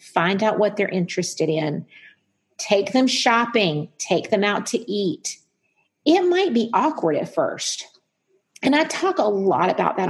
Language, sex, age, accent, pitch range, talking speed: English, female, 40-59, American, 185-245 Hz, 160 wpm